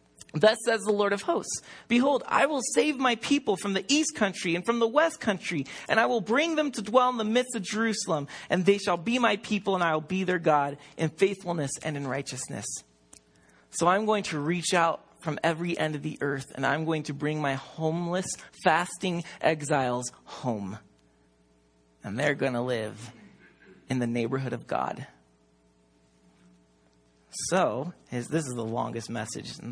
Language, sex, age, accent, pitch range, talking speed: English, male, 30-49, American, 120-175 Hz, 180 wpm